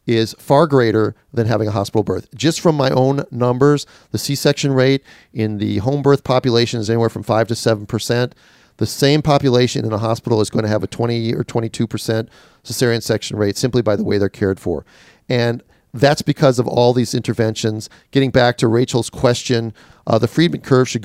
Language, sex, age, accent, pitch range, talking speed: English, male, 40-59, American, 115-135 Hz, 200 wpm